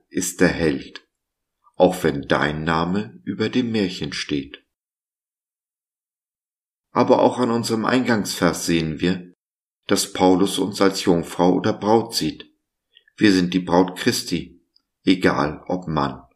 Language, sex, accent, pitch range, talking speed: German, male, German, 85-105 Hz, 125 wpm